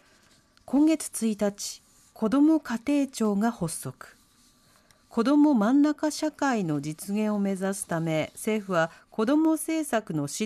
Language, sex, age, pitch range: Japanese, female, 50-69, 175-255 Hz